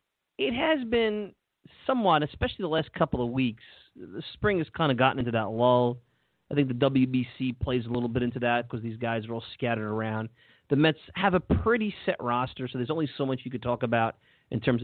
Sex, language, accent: male, English, American